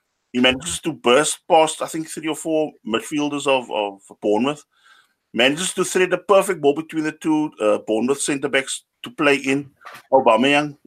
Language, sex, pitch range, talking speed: English, male, 135-160 Hz, 170 wpm